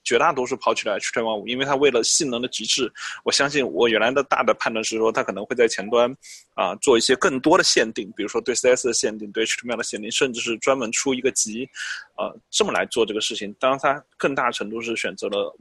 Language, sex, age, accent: Chinese, male, 20-39, native